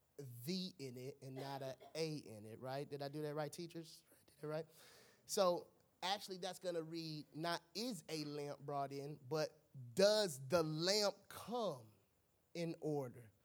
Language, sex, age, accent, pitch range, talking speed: English, male, 30-49, American, 150-200 Hz, 160 wpm